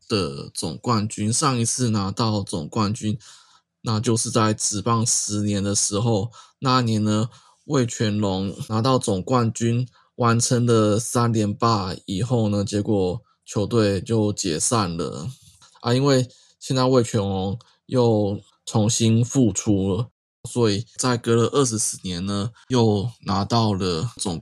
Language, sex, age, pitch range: Chinese, male, 20-39, 105-120 Hz